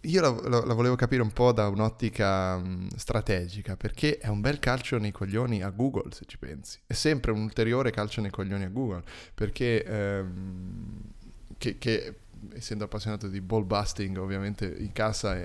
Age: 20-39